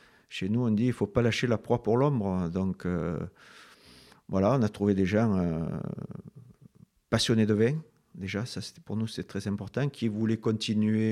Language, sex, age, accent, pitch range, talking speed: French, male, 50-69, French, 95-115 Hz, 190 wpm